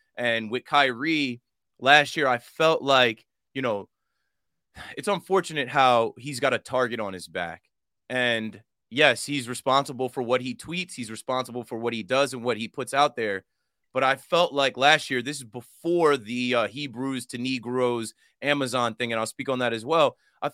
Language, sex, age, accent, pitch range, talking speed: English, male, 20-39, American, 125-170 Hz, 185 wpm